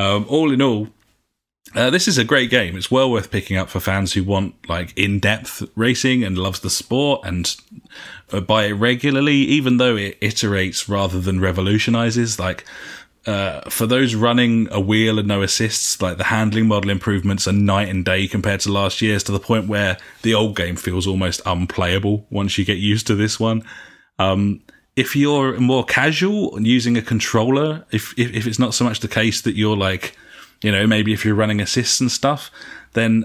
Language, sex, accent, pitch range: English, male, British, 95-115 Hz